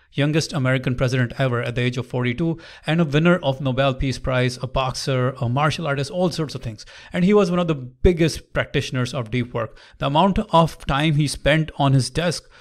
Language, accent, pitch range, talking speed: English, Indian, 130-165 Hz, 215 wpm